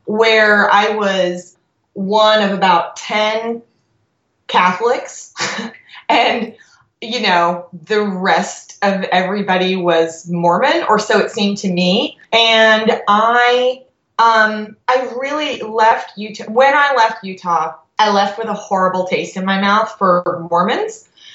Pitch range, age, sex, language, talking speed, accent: 180-225 Hz, 20-39, female, English, 125 wpm, American